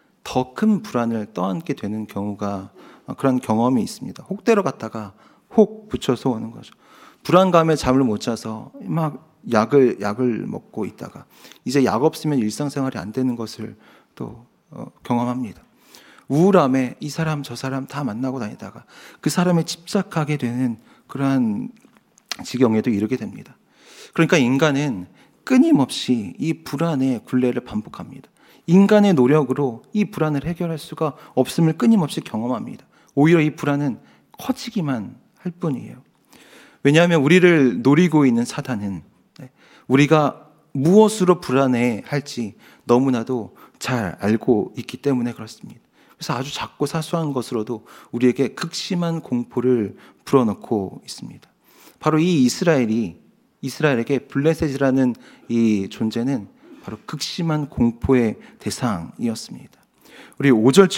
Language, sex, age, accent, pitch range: Korean, male, 40-59, native, 120-165 Hz